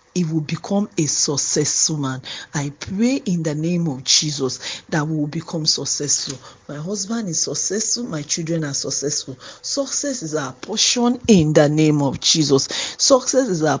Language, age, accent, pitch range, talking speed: English, 40-59, Nigerian, 150-205 Hz, 165 wpm